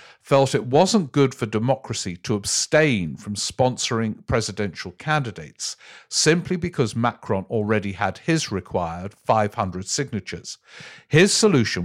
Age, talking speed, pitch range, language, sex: 50-69, 115 wpm, 105-145 Hz, English, male